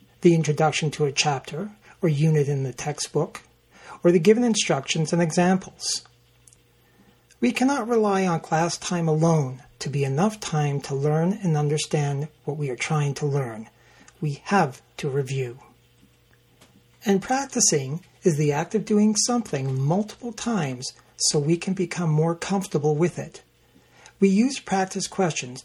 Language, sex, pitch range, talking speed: English, male, 150-200 Hz, 145 wpm